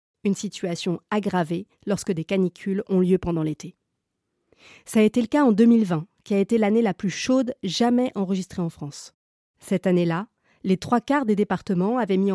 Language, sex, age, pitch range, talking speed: French, female, 30-49, 180-225 Hz, 180 wpm